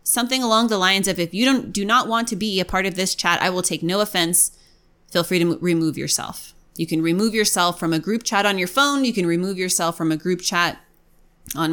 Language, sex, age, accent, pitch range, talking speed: English, female, 20-39, American, 185-235 Hz, 250 wpm